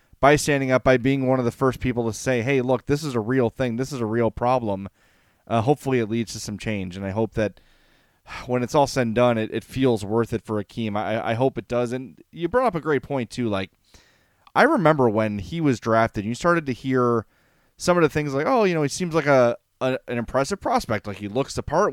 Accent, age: American, 30-49